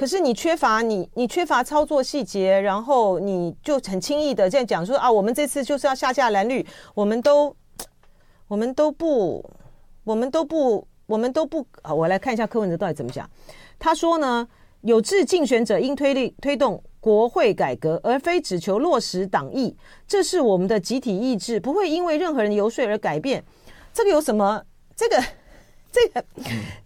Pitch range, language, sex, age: 210-310 Hz, Chinese, female, 40-59